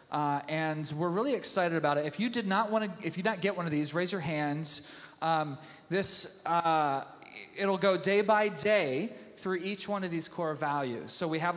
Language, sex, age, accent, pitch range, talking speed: English, male, 30-49, American, 140-175 Hz, 205 wpm